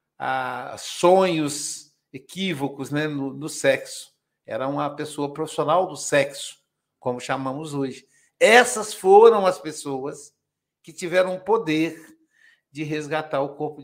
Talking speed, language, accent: 120 wpm, Portuguese, Brazilian